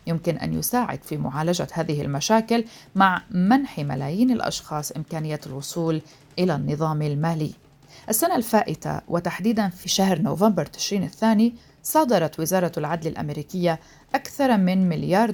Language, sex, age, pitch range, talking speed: Arabic, female, 40-59, 155-200 Hz, 120 wpm